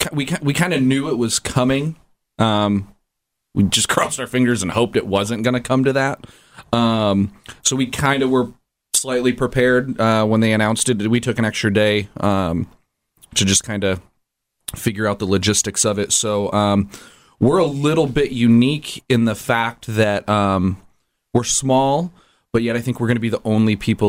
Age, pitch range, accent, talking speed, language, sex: 30-49, 100-120 Hz, American, 190 wpm, English, male